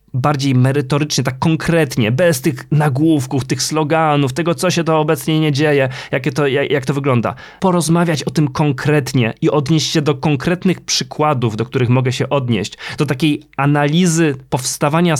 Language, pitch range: Polish, 130-160 Hz